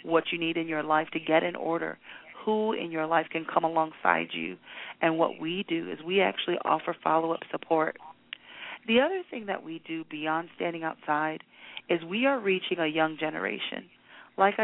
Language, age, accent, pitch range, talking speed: English, 30-49, American, 160-195 Hz, 185 wpm